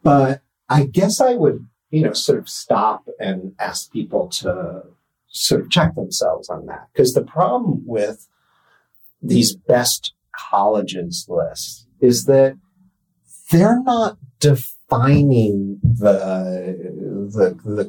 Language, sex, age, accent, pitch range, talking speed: English, male, 40-59, American, 105-145 Hz, 115 wpm